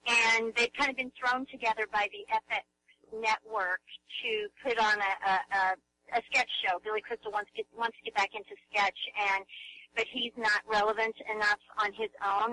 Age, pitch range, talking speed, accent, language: 40-59, 205-250 Hz, 190 wpm, American, English